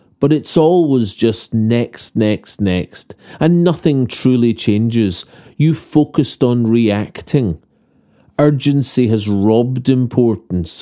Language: English